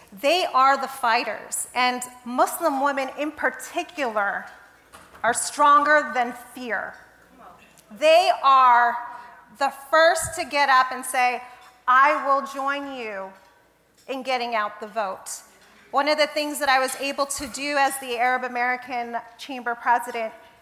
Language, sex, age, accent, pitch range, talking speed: English, female, 30-49, American, 245-305 Hz, 135 wpm